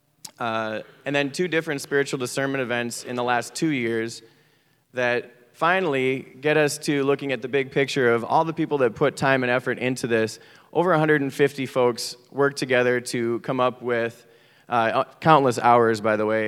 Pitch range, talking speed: 120-150 Hz, 180 wpm